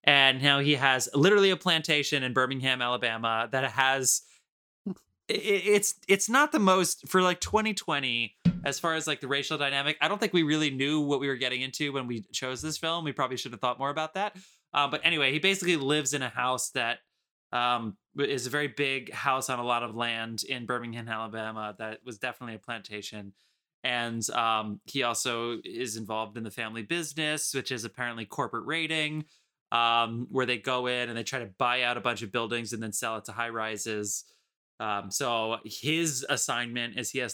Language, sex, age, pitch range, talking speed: English, male, 20-39, 115-145 Hz, 200 wpm